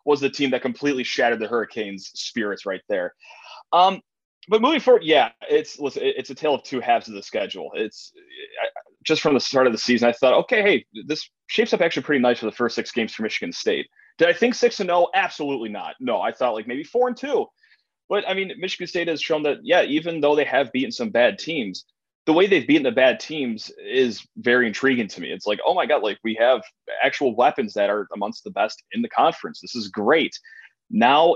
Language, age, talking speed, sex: English, 20-39, 230 wpm, male